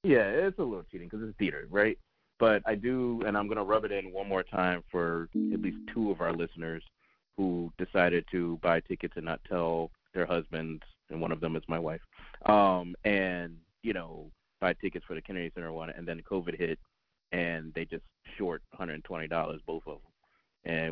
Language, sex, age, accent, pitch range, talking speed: English, male, 30-49, American, 85-100 Hz, 200 wpm